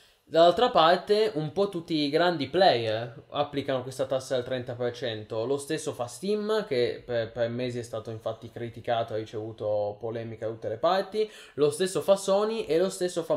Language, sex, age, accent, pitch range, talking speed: Italian, male, 20-39, native, 120-160 Hz, 185 wpm